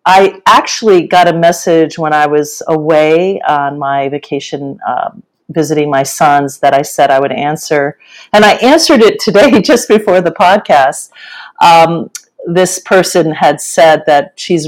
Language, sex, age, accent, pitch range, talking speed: English, female, 50-69, American, 155-185 Hz, 155 wpm